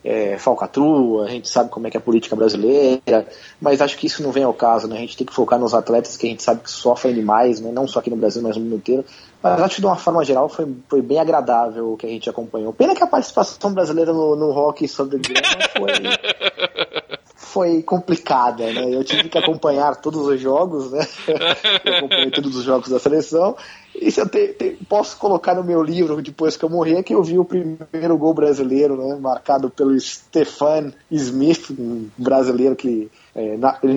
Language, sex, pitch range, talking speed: Portuguese, male, 120-155 Hz, 210 wpm